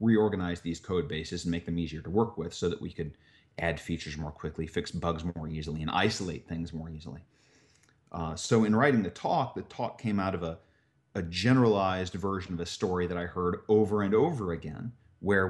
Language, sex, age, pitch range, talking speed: English, male, 30-49, 85-115 Hz, 210 wpm